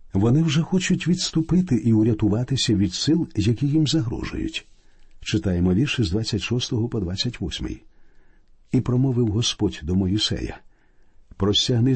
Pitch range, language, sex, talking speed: 100-130 Hz, Ukrainian, male, 115 wpm